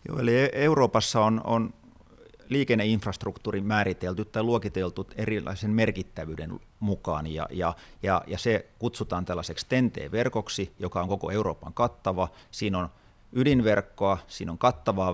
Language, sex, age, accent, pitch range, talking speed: Finnish, male, 30-49, native, 90-105 Hz, 125 wpm